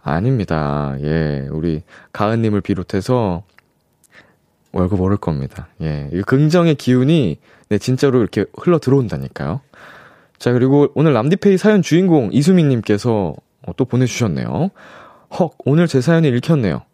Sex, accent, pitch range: male, native, 95-150 Hz